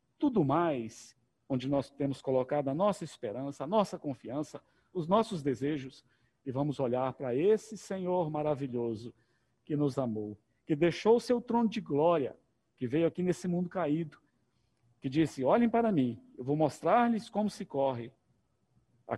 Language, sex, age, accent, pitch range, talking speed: Portuguese, male, 50-69, Brazilian, 125-190 Hz, 155 wpm